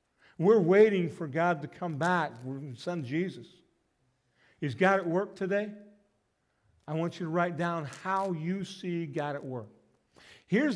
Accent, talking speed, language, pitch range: American, 155 wpm, English, 145-195 Hz